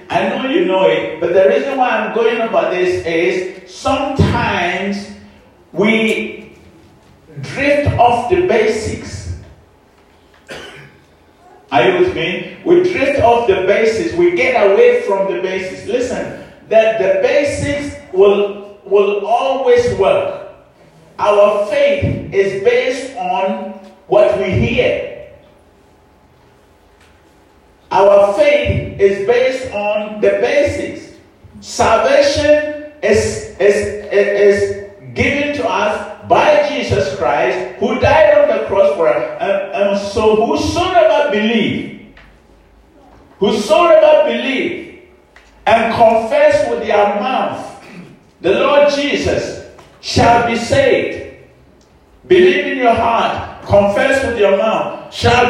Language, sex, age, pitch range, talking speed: English, male, 50-69, 200-300 Hz, 110 wpm